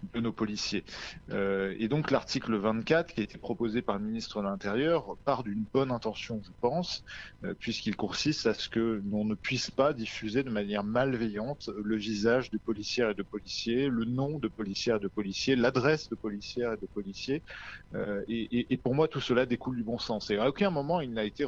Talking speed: 210 wpm